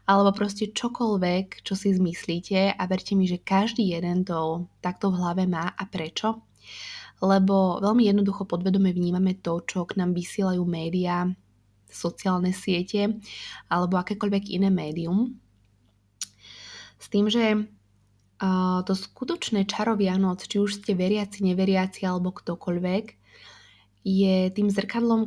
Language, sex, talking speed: Slovak, female, 125 wpm